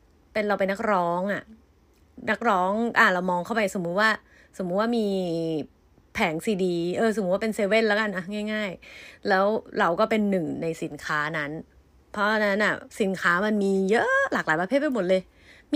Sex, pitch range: female, 195-265 Hz